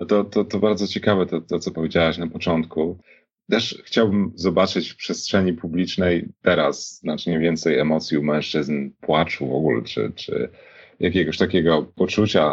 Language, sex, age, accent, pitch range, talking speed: Polish, male, 40-59, native, 80-95 Hz, 150 wpm